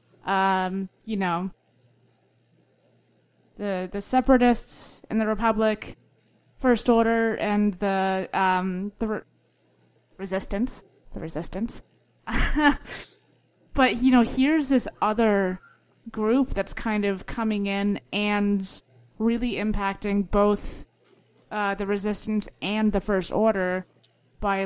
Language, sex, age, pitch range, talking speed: English, female, 20-39, 190-215 Hz, 105 wpm